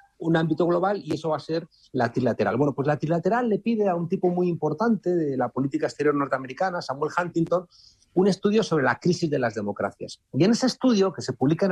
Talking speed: 225 wpm